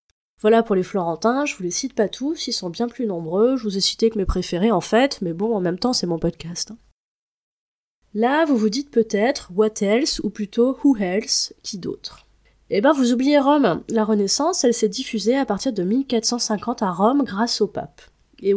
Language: French